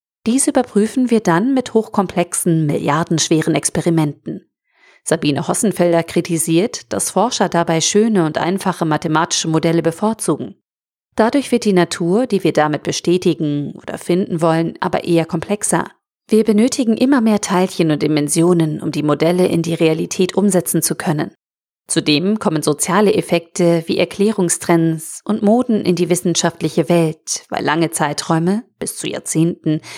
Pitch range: 160-205 Hz